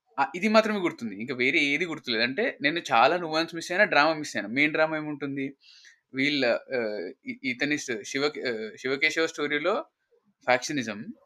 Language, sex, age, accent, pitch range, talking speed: Telugu, male, 20-39, native, 120-180 Hz, 135 wpm